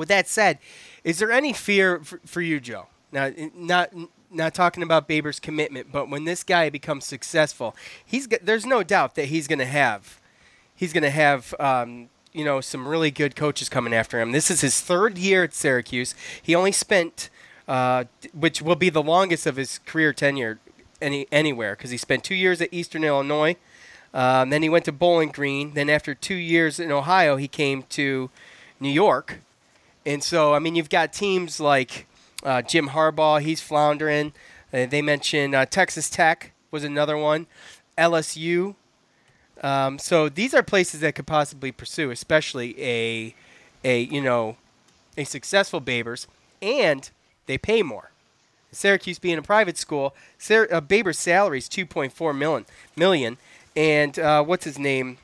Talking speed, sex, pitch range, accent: 170 wpm, male, 140-170 Hz, American